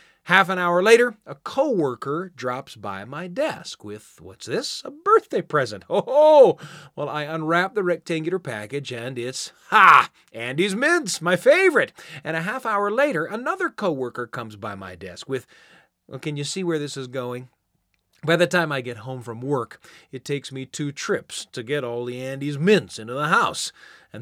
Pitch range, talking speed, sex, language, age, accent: 130-185 Hz, 180 wpm, male, English, 30-49, American